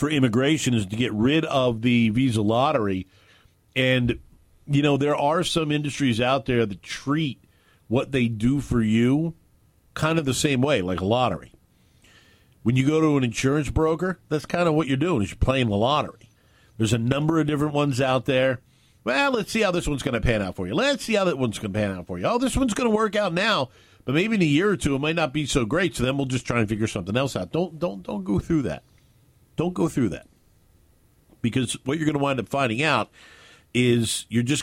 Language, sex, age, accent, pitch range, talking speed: English, male, 50-69, American, 110-145 Hz, 235 wpm